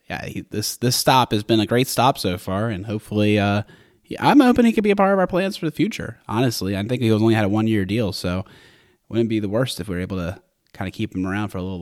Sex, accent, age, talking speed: male, American, 30-49, 280 wpm